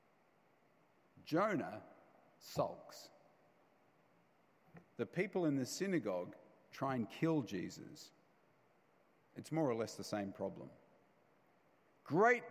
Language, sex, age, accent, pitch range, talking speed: English, male, 50-69, Australian, 120-165 Hz, 90 wpm